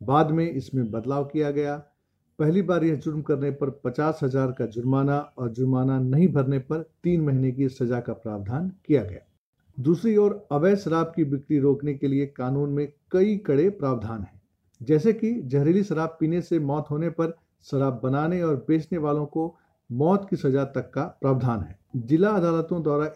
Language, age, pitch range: Hindi, 50-69, 135-165 Hz